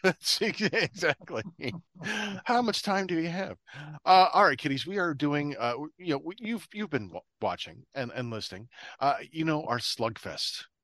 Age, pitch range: 40-59, 120-175 Hz